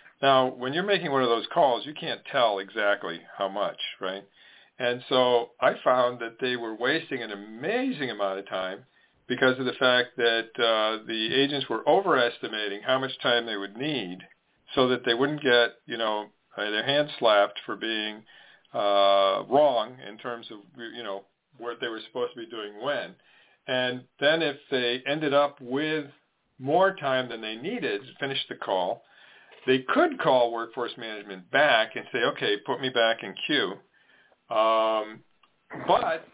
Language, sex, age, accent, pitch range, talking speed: English, male, 50-69, American, 115-140 Hz, 170 wpm